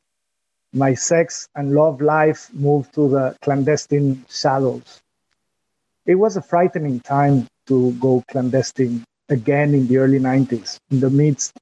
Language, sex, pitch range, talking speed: English, male, 130-155 Hz, 135 wpm